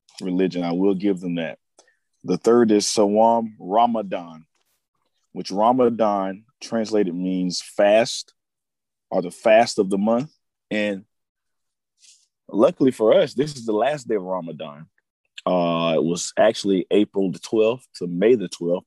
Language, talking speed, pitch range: English, 140 wpm, 95-115 Hz